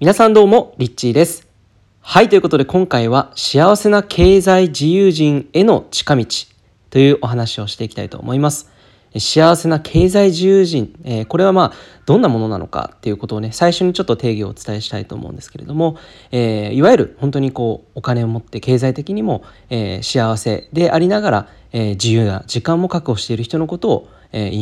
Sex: male